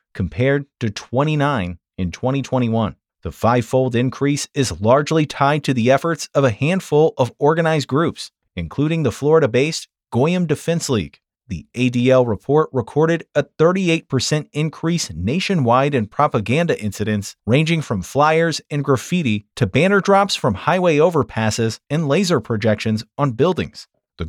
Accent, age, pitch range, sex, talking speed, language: American, 30-49, 115-155 Hz, male, 140 wpm, English